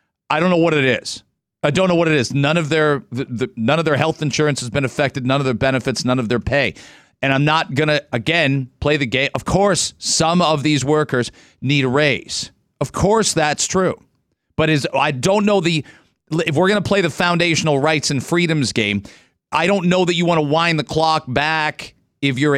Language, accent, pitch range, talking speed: English, American, 135-185 Hz, 225 wpm